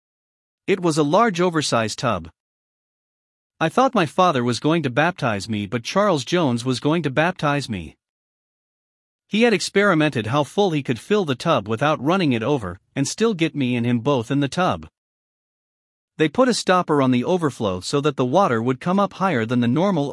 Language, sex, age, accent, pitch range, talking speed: English, male, 40-59, American, 125-180 Hz, 195 wpm